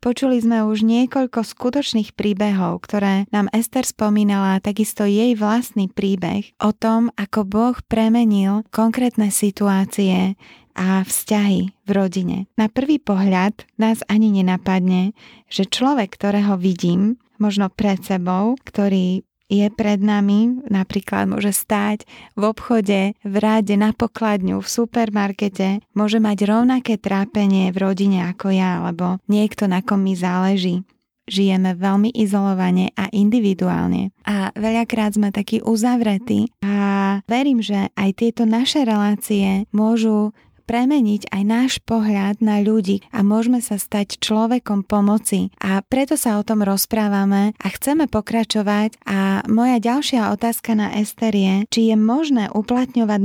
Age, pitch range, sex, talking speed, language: 20-39, 195-225 Hz, female, 130 wpm, Slovak